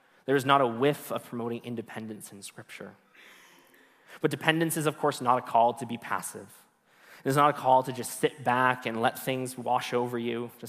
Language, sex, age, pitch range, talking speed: English, male, 20-39, 120-145 Hz, 210 wpm